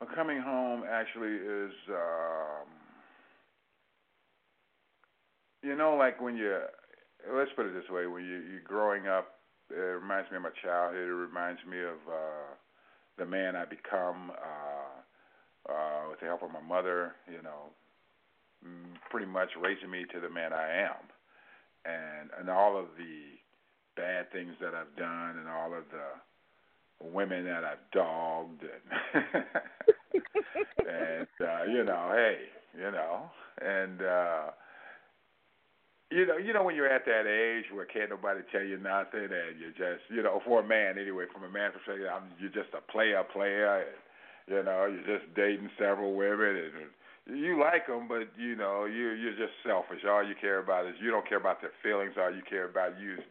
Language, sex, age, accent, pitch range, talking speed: English, male, 50-69, American, 85-105 Hz, 170 wpm